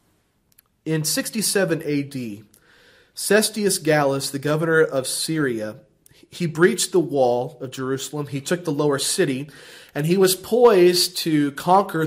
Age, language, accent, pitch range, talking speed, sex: 30-49, English, American, 135-180 Hz, 130 wpm, male